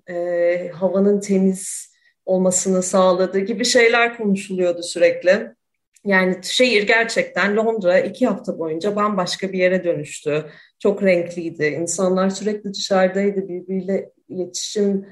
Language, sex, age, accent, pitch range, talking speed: Turkish, female, 30-49, native, 180-225 Hz, 105 wpm